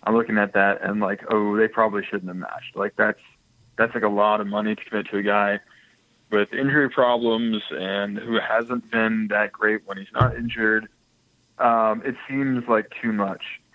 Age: 20-39